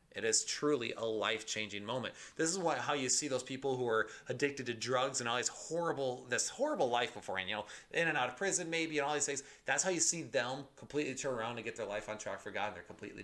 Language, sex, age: English, male, 30-49